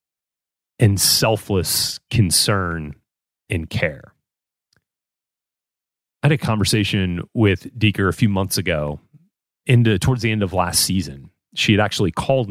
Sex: male